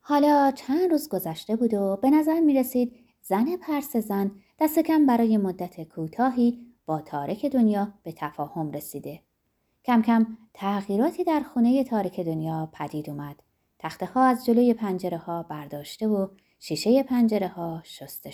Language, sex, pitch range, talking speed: Persian, female, 175-270 Hz, 145 wpm